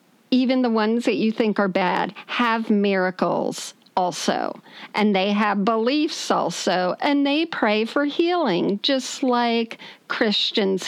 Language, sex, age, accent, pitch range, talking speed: English, female, 50-69, American, 195-260 Hz, 130 wpm